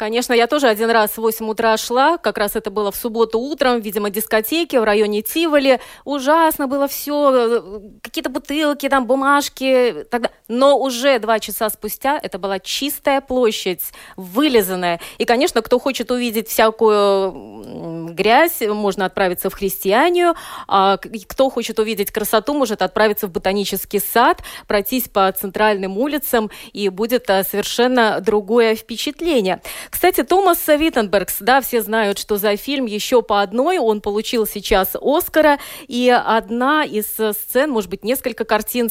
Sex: female